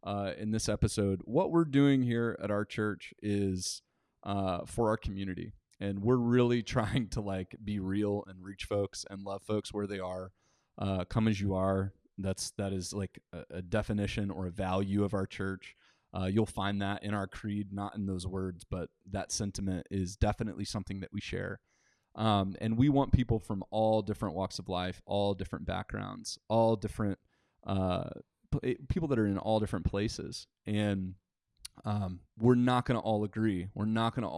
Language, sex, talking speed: English, male, 190 wpm